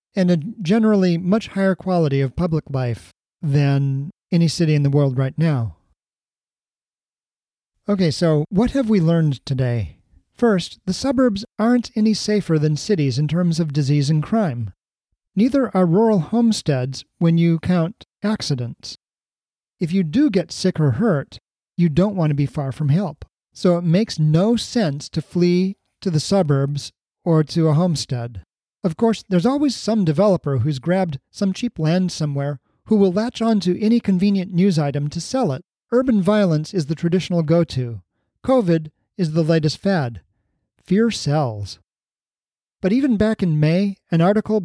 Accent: American